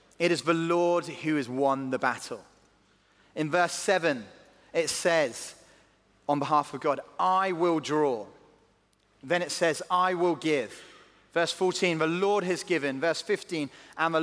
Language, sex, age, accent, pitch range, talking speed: English, male, 30-49, British, 145-180 Hz, 155 wpm